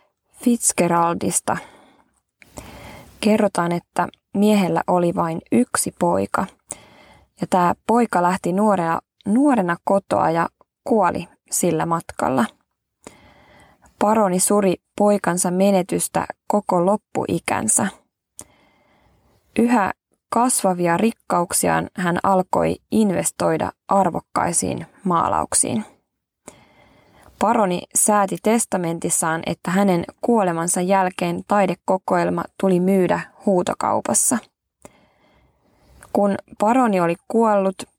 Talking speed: 75 wpm